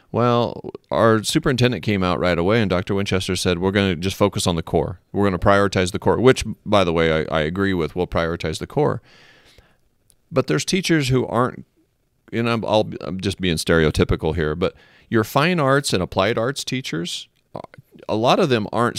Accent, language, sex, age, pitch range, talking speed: American, English, male, 40-59, 90-115 Hz, 200 wpm